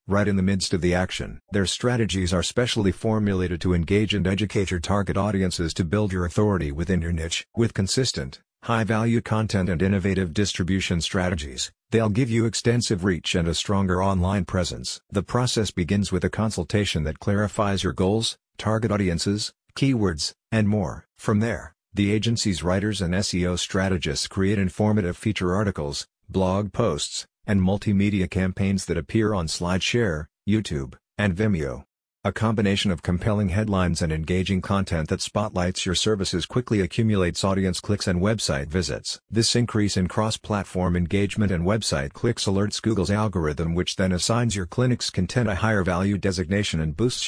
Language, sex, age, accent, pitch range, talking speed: English, male, 50-69, American, 90-105 Hz, 160 wpm